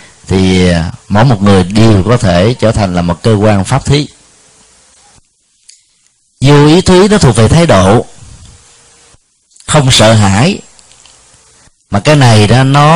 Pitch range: 100-140 Hz